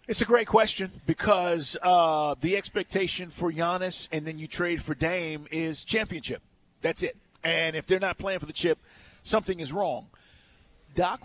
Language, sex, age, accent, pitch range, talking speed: English, male, 40-59, American, 160-200 Hz, 170 wpm